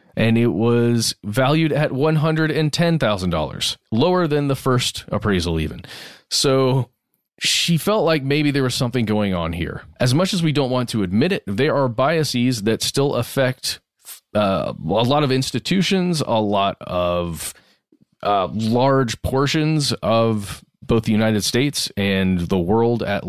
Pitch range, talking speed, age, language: 105-135 Hz, 150 wpm, 30-49, English